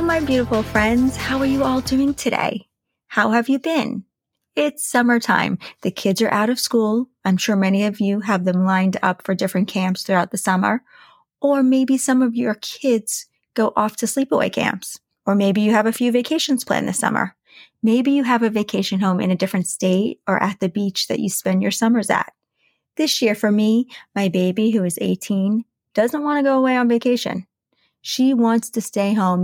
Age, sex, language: 30-49, female, English